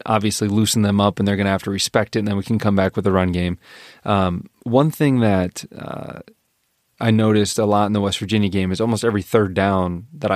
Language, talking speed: English, 245 wpm